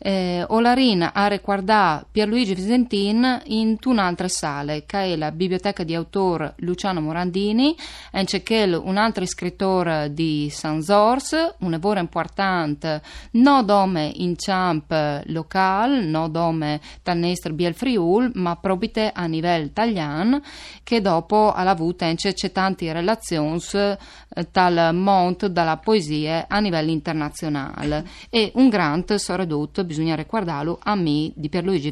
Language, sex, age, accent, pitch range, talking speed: Italian, female, 20-39, native, 165-210 Hz, 130 wpm